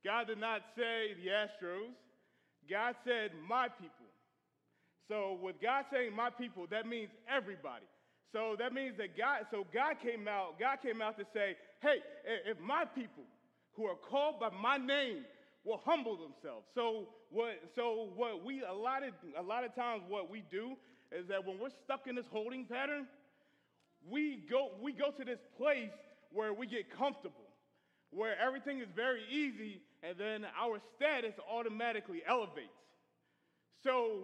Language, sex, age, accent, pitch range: Japanese, male, 30-49, American, 215-275 Hz